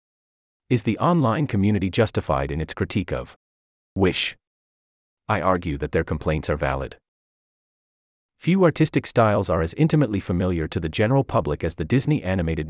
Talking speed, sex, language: 150 wpm, male, English